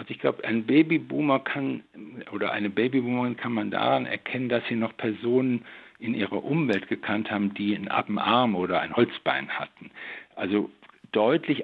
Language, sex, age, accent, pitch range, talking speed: German, male, 60-79, German, 105-130 Hz, 155 wpm